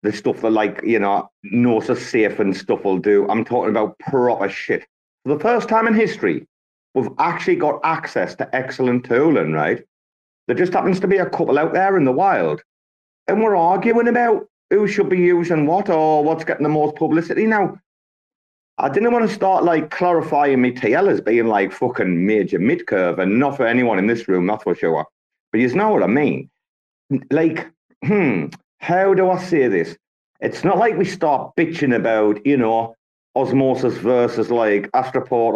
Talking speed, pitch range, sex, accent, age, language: 185 wpm, 115-180 Hz, male, British, 40-59, English